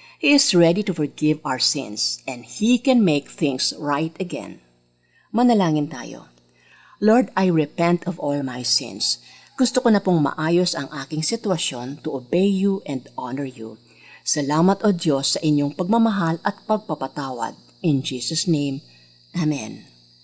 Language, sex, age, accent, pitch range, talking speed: Filipino, female, 50-69, native, 140-200 Hz, 145 wpm